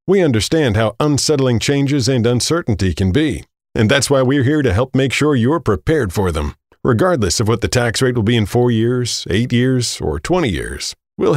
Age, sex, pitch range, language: 40-59, male, 110-140 Hz, English